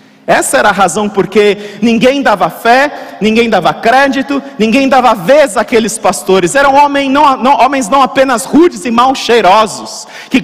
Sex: male